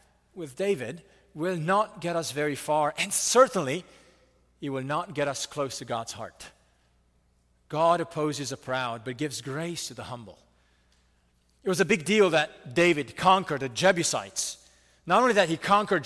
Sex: male